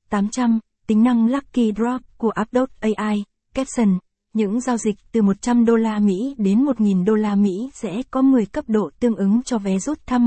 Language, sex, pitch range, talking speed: Vietnamese, female, 205-240 Hz, 195 wpm